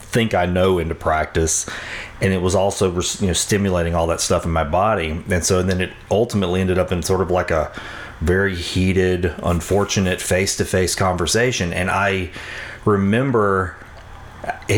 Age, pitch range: 40-59, 90-110 Hz